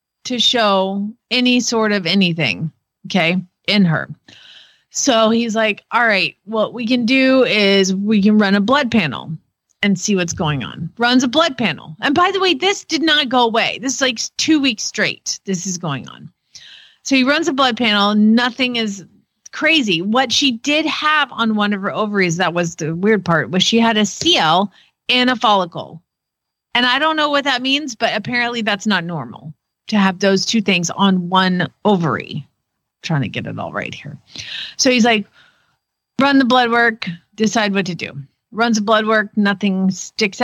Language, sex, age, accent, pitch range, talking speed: English, female, 30-49, American, 180-245 Hz, 190 wpm